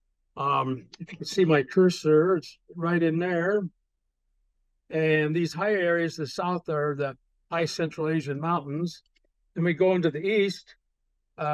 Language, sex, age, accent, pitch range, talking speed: English, male, 60-79, American, 150-180 Hz, 155 wpm